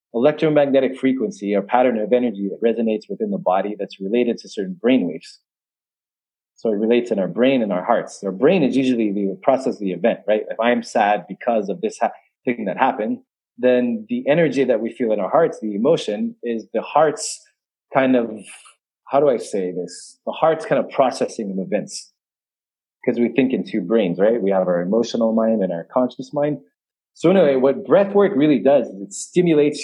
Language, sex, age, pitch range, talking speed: English, male, 30-49, 105-150 Hz, 195 wpm